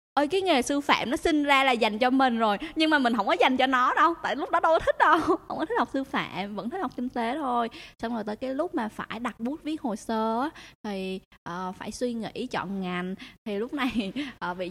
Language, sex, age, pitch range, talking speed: Vietnamese, female, 20-39, 200-260 Hz, 255 wpm